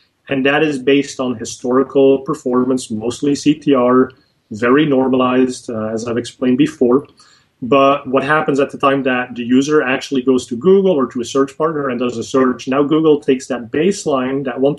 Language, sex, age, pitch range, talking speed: English, male, 30-49, 120-135 Hz, 185 wpm